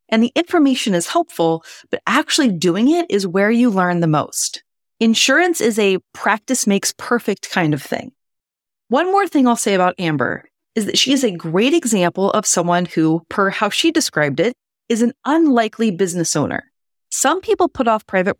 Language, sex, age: English, female, 30-49